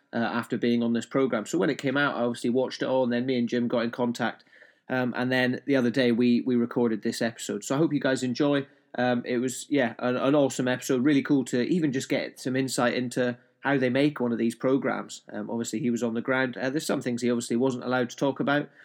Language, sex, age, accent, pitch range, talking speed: English, male, 30-49, British, 115-135 Hz, 265 wpm